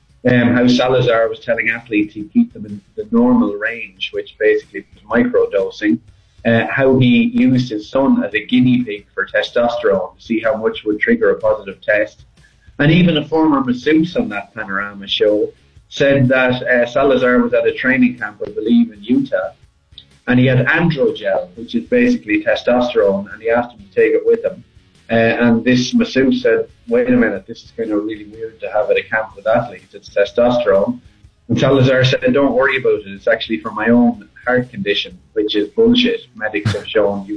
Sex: male